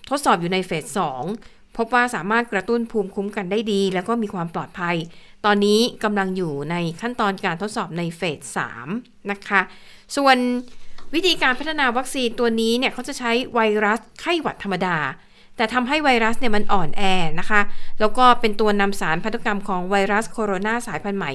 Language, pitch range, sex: Thai, 195-245 Hz, female